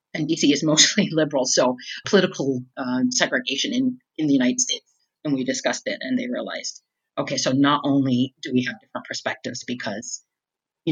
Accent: American